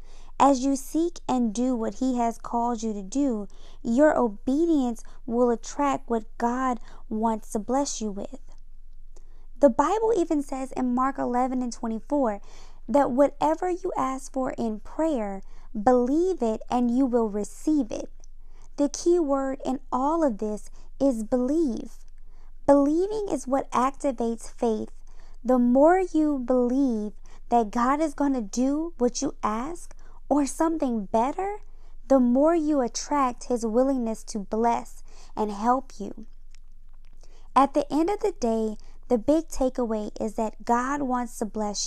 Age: 20-39